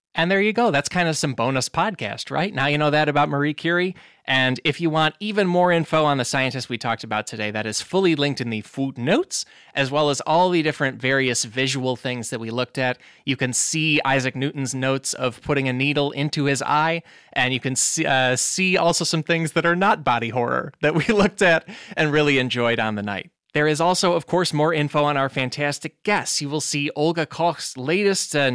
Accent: American